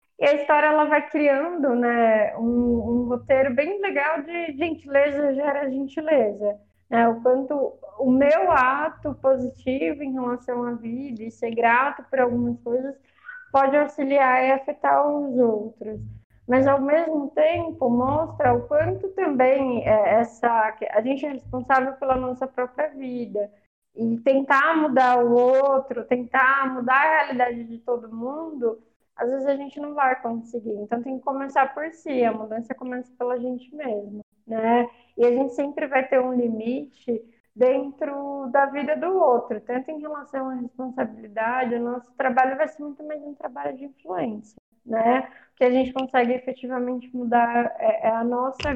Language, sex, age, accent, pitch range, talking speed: Portuguese, female, 20-39, Brazilian, 240-280 Hz, 155 wpm